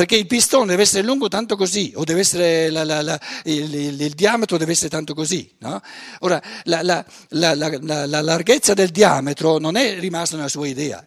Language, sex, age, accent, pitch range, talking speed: Italian, male, 60-79, native, 150-210 Hz, 205 wpm